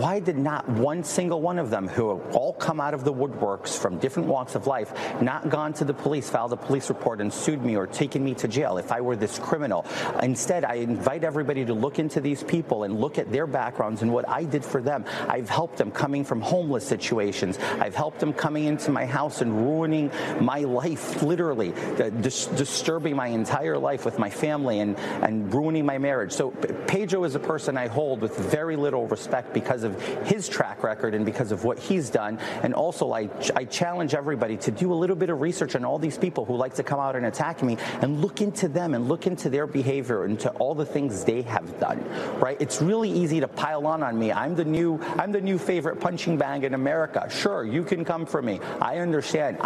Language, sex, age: English, male, 40-59